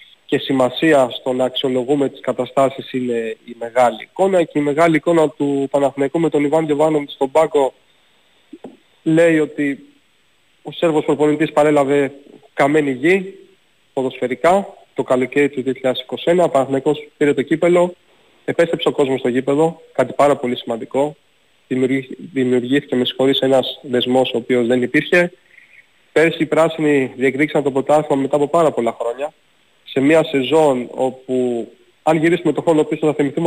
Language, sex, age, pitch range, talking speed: Greek, male, 30-49, 130-165 Hz, 145 wpm